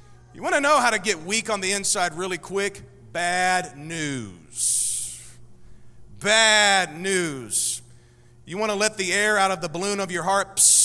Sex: male